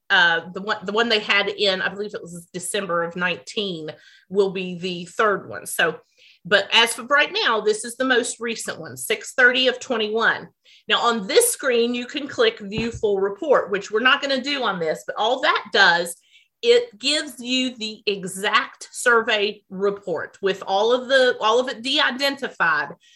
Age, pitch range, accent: 30-49, 205-260 Hz, American